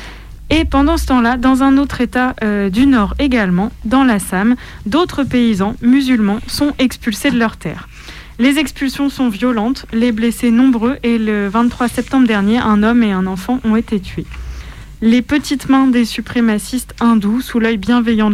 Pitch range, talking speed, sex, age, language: 210-255 Hz, 165 wpm, female, 20-39, French